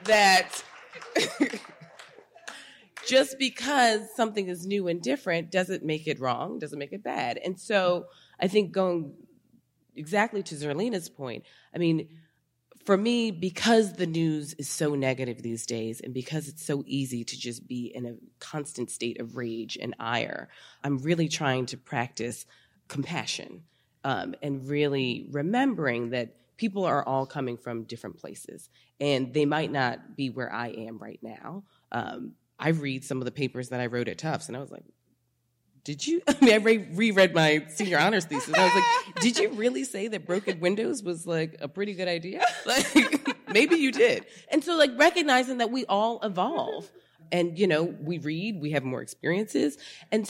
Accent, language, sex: American, English, female